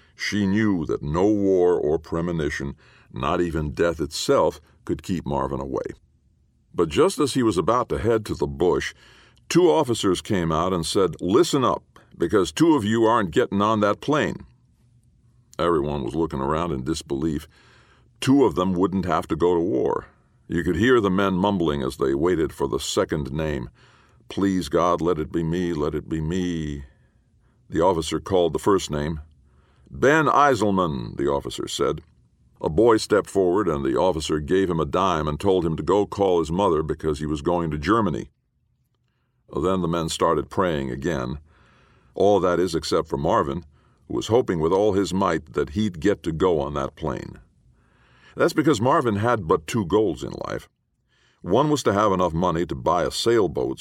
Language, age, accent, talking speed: English, 60-79, American, 180 wpm